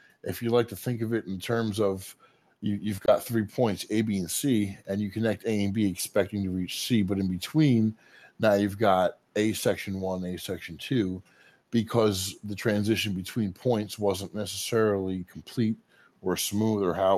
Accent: American